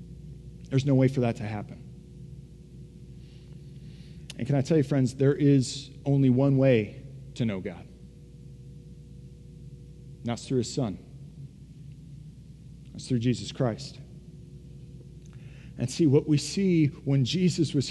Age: 40-59